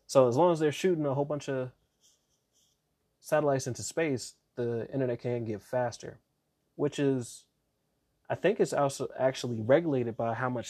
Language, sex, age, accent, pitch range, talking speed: English, male, 20-39, American, 120-145 Hz, 165 wpm